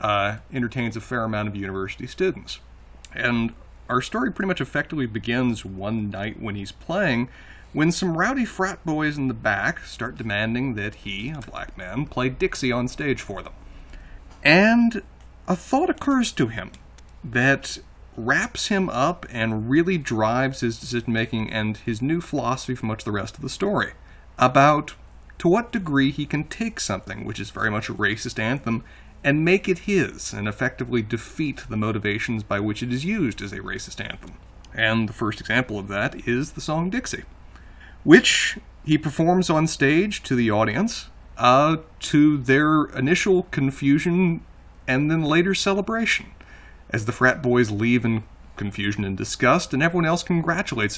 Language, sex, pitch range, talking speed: English, male, 105-155 Hz, 165 wpm